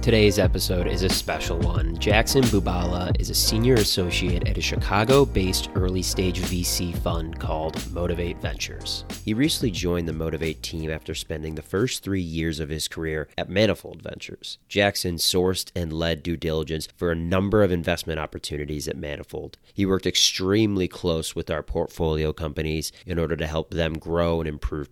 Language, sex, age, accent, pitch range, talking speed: English, male, 30-49, American, 80-100 Hz, 165 wpm